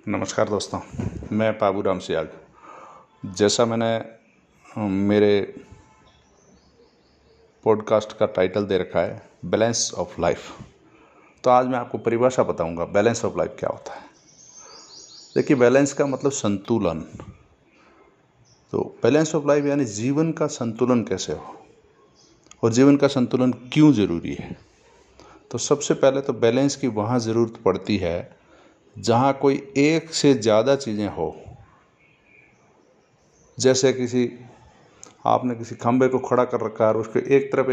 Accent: native